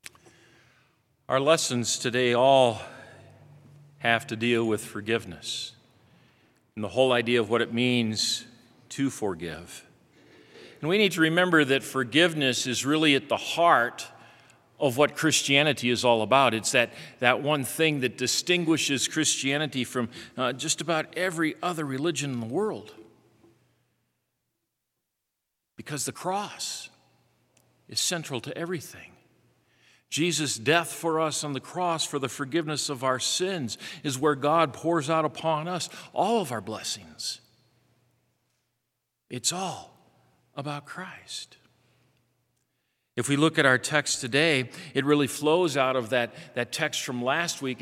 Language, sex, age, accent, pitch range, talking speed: English, male, 50-69, American, 125-155 Hz, 135 wpm